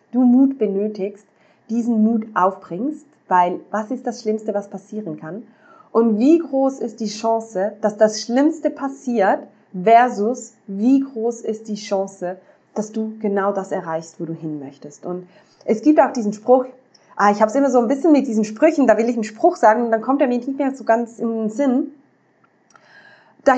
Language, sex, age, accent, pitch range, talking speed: German, female, 20-39, German, 185-255 Hz, 190 wpm